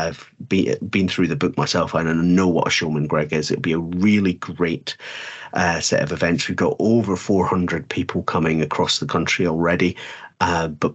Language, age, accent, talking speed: English, 40-59, British, 190 wpm